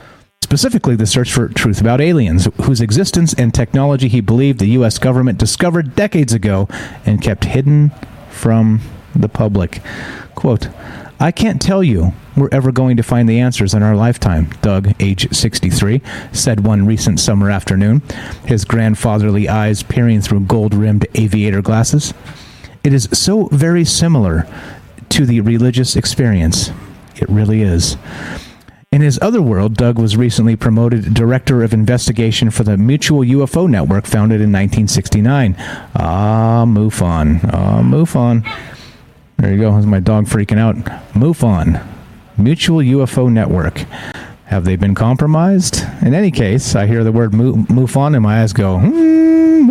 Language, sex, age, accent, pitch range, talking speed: English, male, 40-59, American, 105-130 Hz, 145 wpm